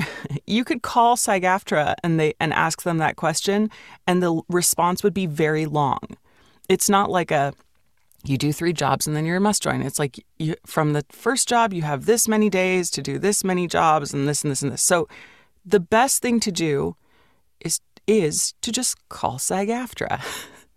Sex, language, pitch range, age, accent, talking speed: female, English, 140-195 Hz, 30-49, American, 195 wpm